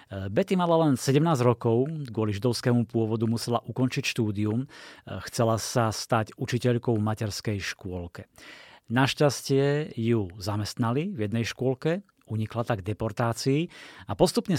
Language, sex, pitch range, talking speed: Slovak, male, 115-140 Hz, 120 wpm